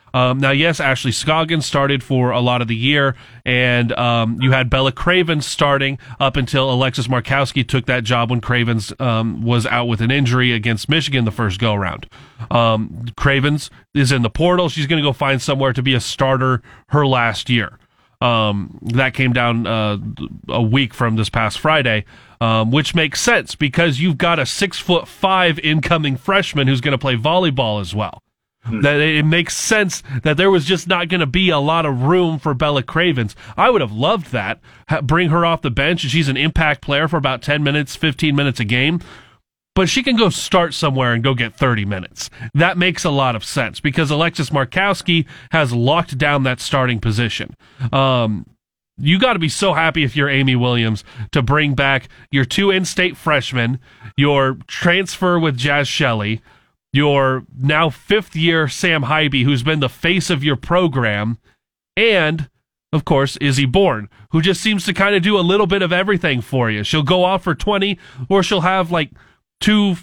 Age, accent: 30-49, American